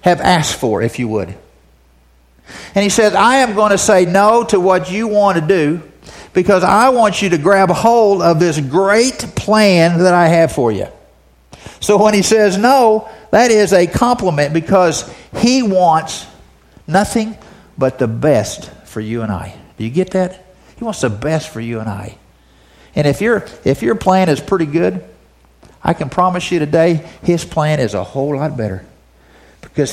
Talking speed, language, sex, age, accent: 180 wpm, English, male, 50-69, American